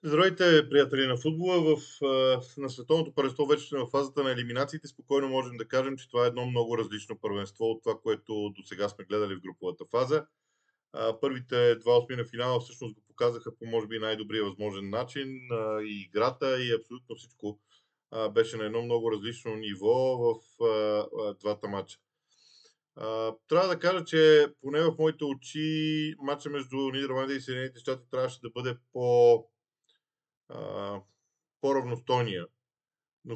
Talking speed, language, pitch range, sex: 145 wpm, Bulgarian, 115-145 Hz, male